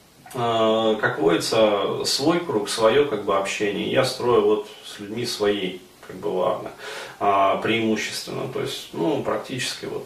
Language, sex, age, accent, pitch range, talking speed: Russian, male, 30-49, native, 105-125 Hz, 135 wpm